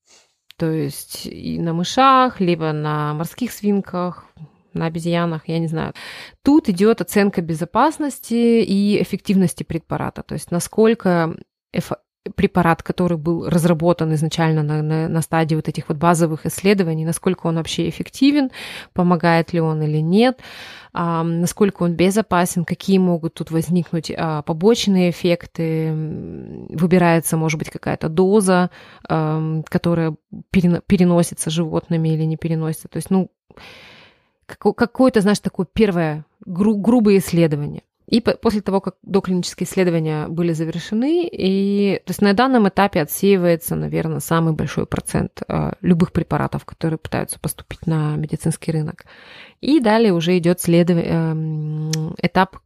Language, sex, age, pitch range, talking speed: Russian, female, 20-39, 160-195 Hz, 125 wpm